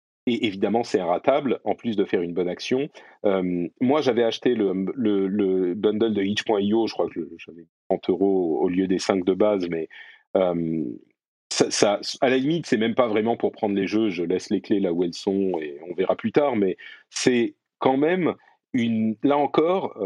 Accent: French